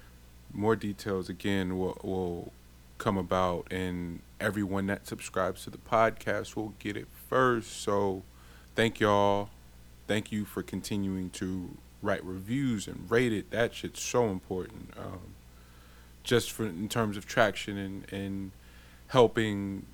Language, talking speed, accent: English, 135 wpm, American